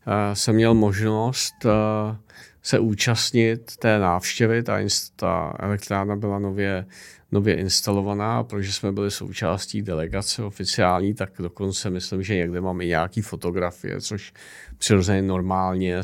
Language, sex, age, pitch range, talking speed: Czech, male, 40-59, 90-105 Hz, 115 wpm